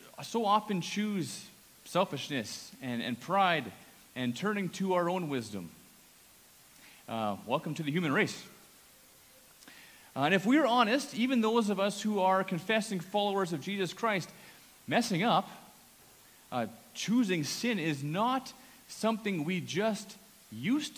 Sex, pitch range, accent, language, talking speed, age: male, 145-205 Hz, American, English, 130 wpm, 40-59